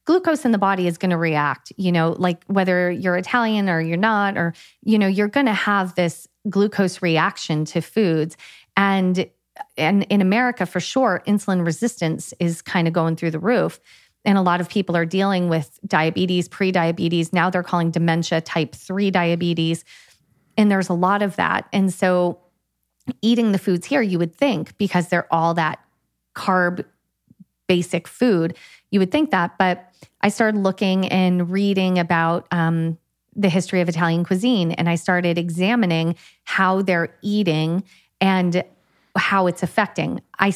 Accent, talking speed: American, 165 wpm